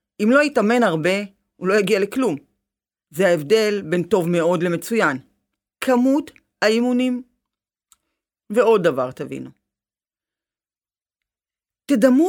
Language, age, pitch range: Hebrew, 40-59, 180-265 Hz